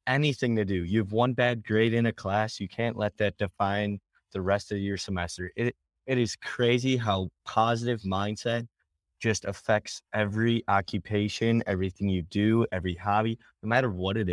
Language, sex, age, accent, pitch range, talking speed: English, male, 20-39, American, 95-115 Hz, 170 wpm